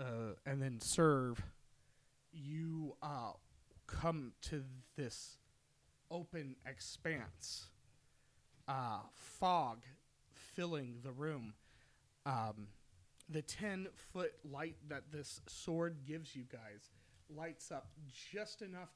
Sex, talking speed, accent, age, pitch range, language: male, 90 wpm, American, 30-49, 125-160 Hz, English